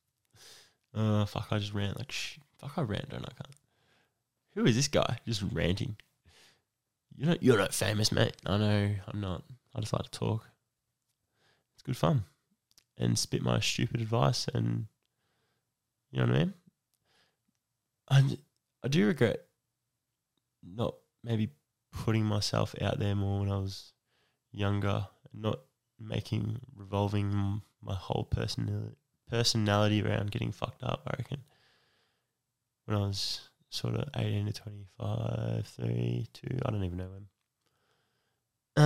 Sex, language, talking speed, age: male, English, 140 wpm, 10-29